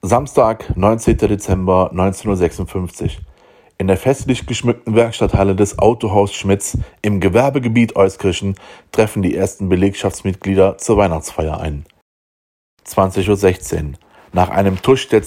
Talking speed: 110 wpm